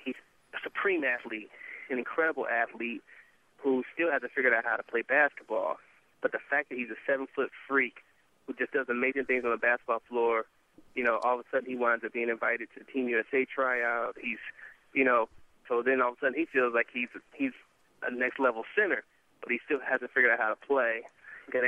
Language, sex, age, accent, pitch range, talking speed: English, male, 20-39, American, 120-135 Hz, 200 wpm